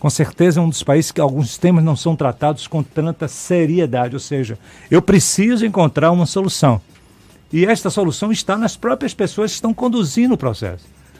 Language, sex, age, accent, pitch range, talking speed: Portuguese, male, 60-79, Brazilian, 130-185 Hz, 180 wpm